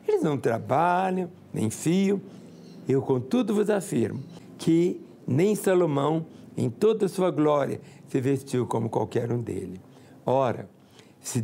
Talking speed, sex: 130 wpm, male